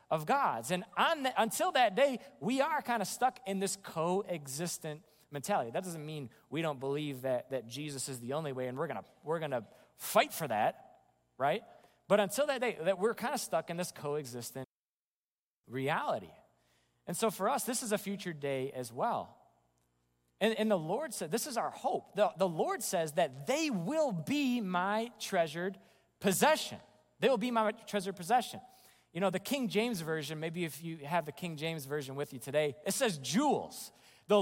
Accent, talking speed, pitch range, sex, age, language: American, 195 wpm, 145-225 Hz, male, 30-49, English